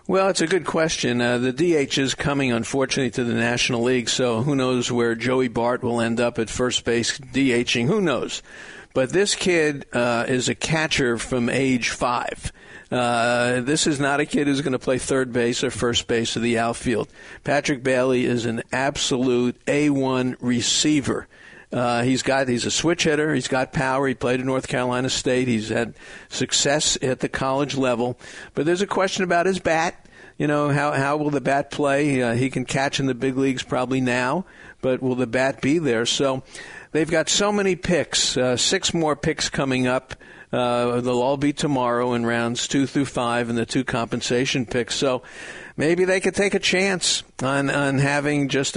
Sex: male